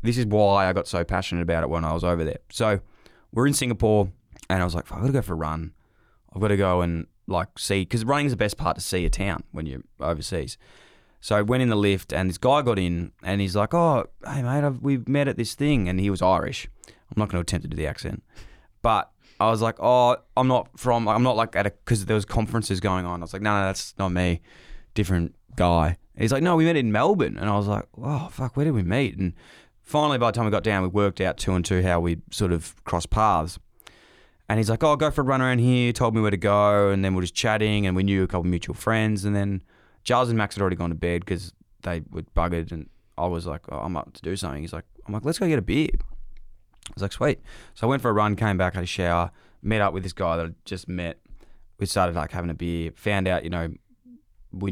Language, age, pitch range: English, 20-39, 90-115 Hz